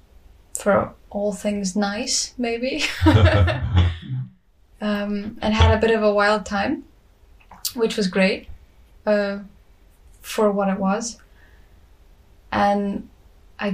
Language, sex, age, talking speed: English, female, 10-29, 105 wpm